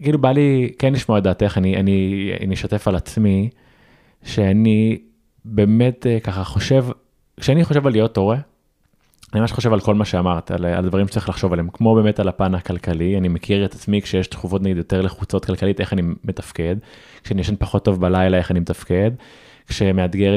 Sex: male